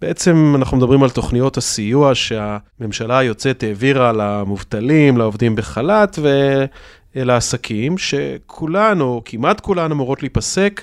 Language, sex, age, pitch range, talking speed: Hebrew, male, 30-49, 120-180 Hz, 105 wpm